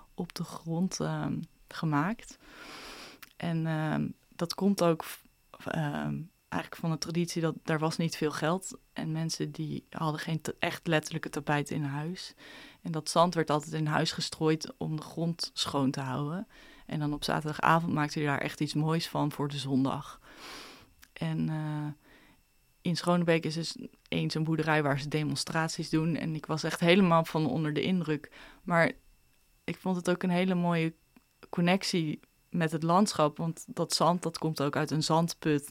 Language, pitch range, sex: Dutch, 150-170 Hz, female